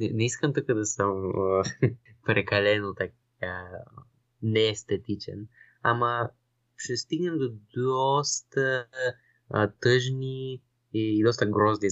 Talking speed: 110 wpm